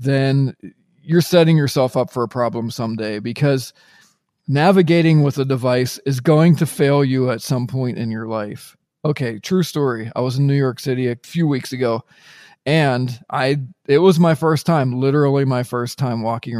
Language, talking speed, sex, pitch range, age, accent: English, 180 wpm, male, 120-155 Hz, 40-59, American